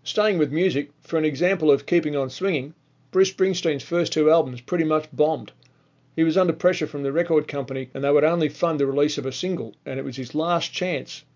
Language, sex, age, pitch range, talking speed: English, male, 40-59, 140-165 Hz, 220 wpm